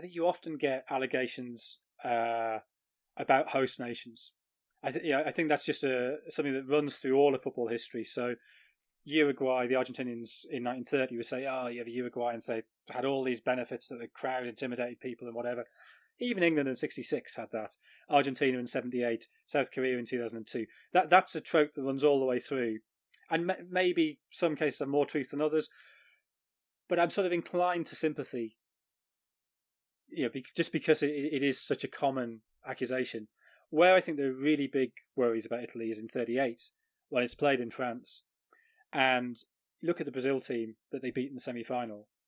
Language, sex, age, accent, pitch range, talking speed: English, male, 20-39, British, 120-145 Hz, 185 wpm